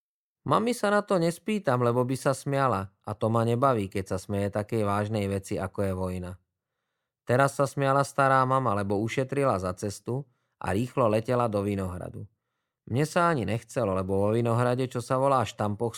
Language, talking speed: English, 175 wpm